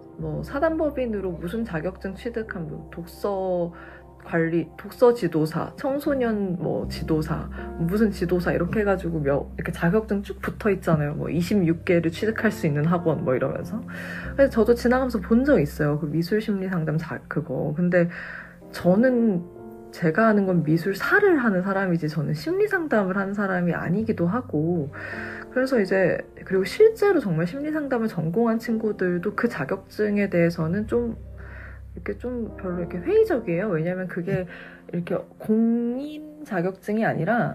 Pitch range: 165-215 Hz